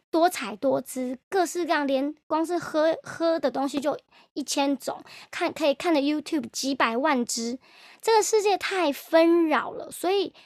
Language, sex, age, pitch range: Chinese, male, 20-39, 265-345 Hz